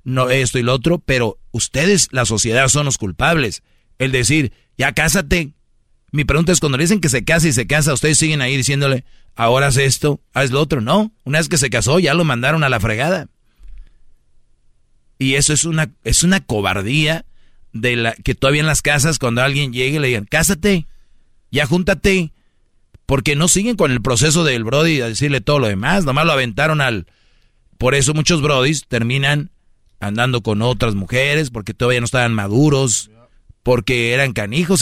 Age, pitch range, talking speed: 40-59, 120-160 Hz, 180 wpm